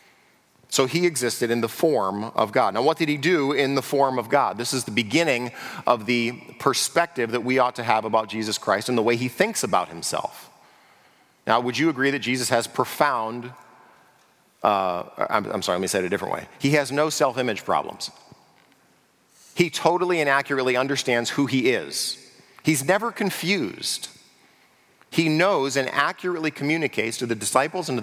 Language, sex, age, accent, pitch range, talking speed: English, male, 40-59, American, 120-155 Hz, 185 wpm